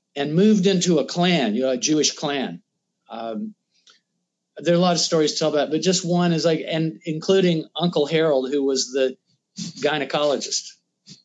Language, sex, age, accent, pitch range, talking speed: English, male, 50-69, American, 130-175 Hz, 175 wpm